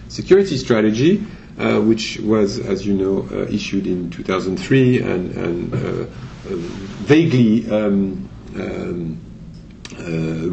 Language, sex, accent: English, male, French